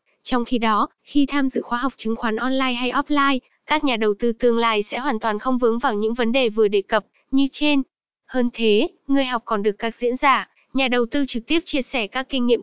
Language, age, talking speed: English, 10-29, 245 wpm